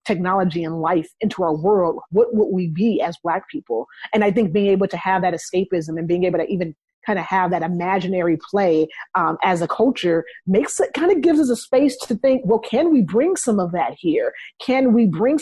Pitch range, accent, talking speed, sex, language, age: 175-220 Hz, American, 225 wpm, female, English, 30-49